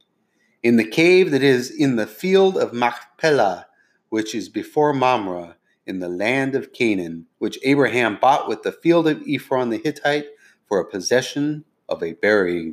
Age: 30-49